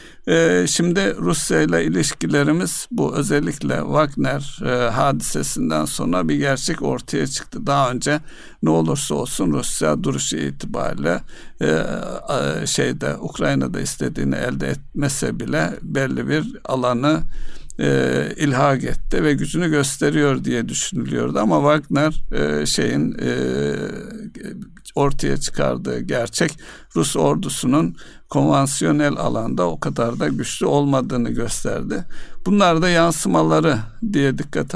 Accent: native